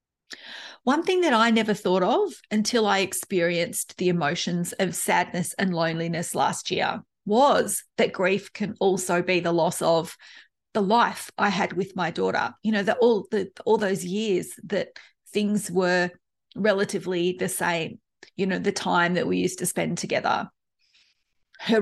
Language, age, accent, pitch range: English, 40-59, Australian, 185-225 Hz